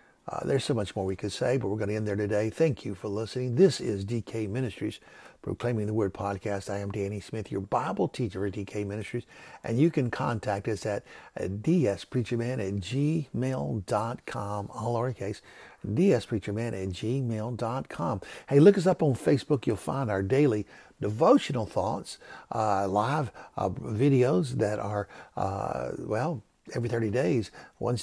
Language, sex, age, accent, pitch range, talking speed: English, male, 60-79, American, 100-130 Hz, 165 wpm